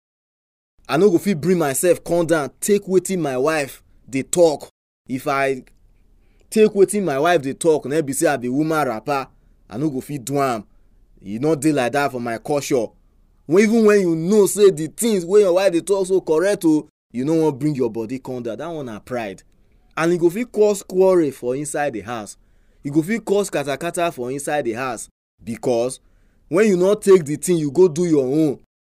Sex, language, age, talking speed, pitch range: male, English, 20-39, 210 wpm, 105-170 Hz